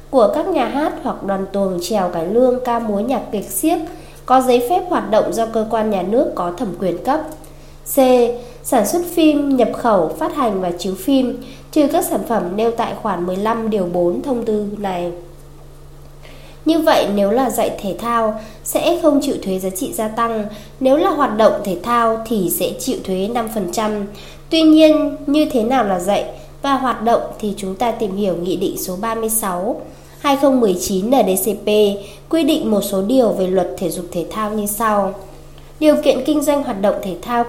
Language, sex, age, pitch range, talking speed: Vietnamese, female, 20-39, 200-275 Hz, 190 wpm